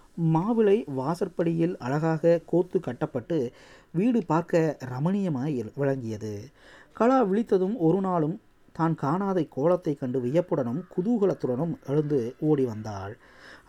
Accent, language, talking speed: native, Tamil, 95 wpm